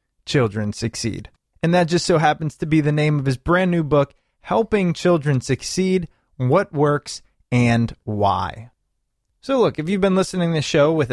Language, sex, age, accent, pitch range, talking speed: English, male, 20-39, American, 120-175 Hz, 180 wpm